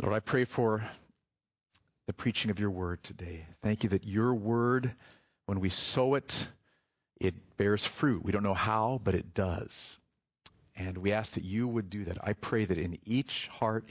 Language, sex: English, male